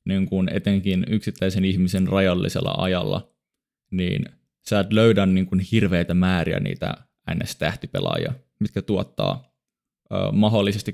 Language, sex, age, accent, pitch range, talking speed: Finnish, male, 20-39, native, 95-105 Hz, 115 wpm